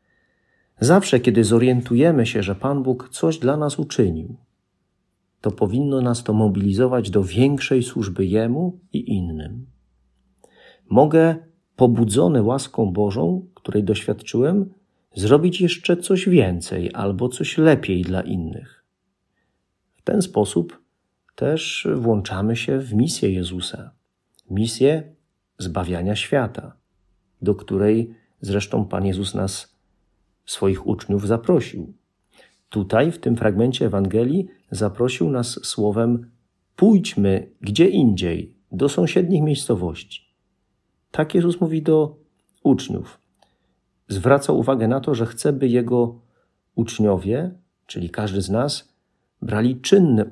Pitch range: 100-135 Hz